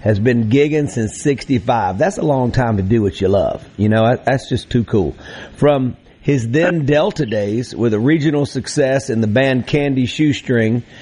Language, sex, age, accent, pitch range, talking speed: English, male, 50-69, American, 110-145 Hz, 180 wpm